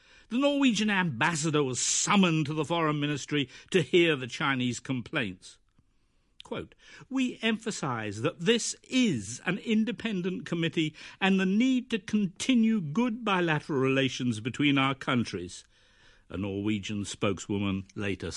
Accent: British